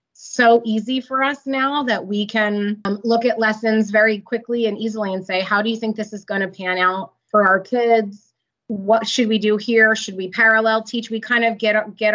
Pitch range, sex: 205-235 Hz, female